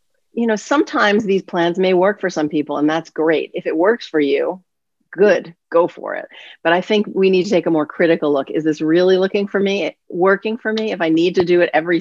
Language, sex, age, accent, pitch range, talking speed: English, female, 40-59, American, 160-195 Hz, 245 wpm